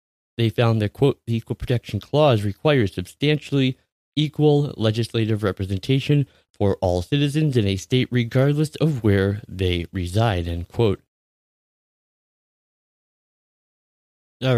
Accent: American